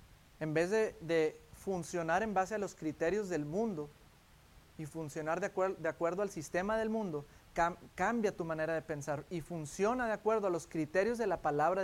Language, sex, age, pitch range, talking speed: English, male, 30-49, 150-190 Hz, 180 wpm